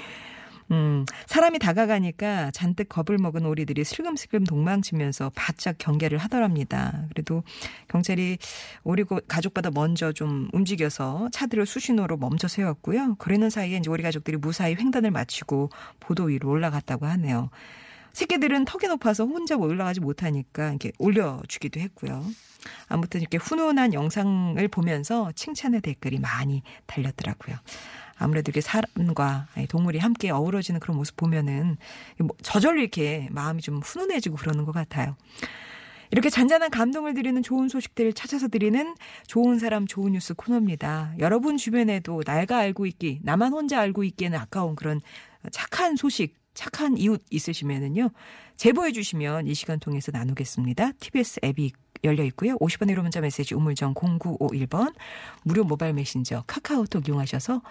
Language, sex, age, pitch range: Korean, female, 40-59, 150-225 Hz